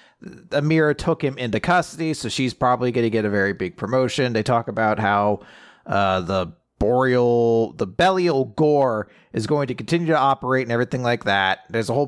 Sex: male